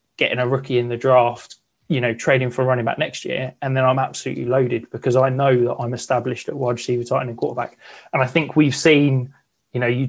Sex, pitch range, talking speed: male, 120-140 Hz, 240 wpm